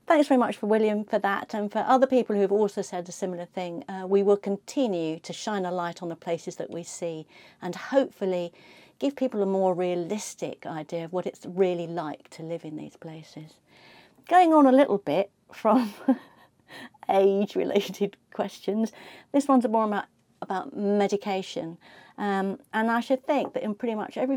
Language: English